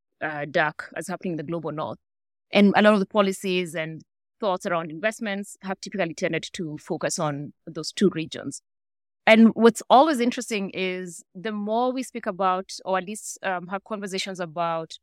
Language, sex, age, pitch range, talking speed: English, female, 20-39, 170-215 Hz, 175 wpm